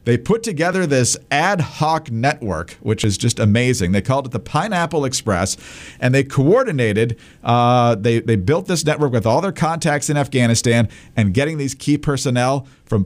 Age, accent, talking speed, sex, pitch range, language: 50-69, American, 175 wpm, male, 110-140 Hz, English